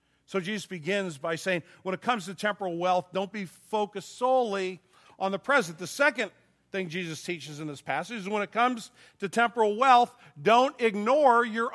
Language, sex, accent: English, male, American